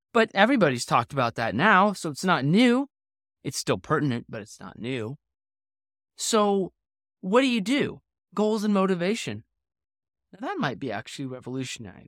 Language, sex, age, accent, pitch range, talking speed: English, male, 20-39, American, 120-200 Hz, 155 wpm